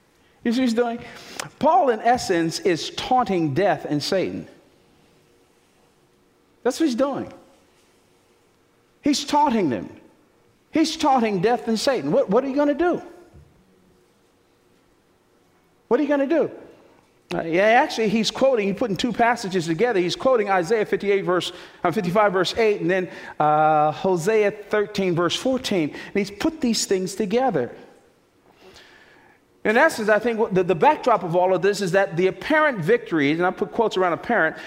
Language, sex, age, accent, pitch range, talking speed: English, male, 50-69, American, 170-240 Hz, 160 wpm